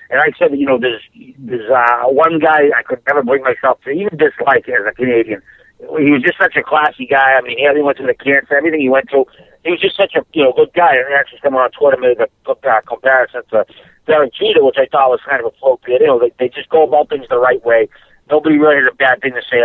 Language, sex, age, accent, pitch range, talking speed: English, male, 50-69, American, 125-175 Hz, 275 wpm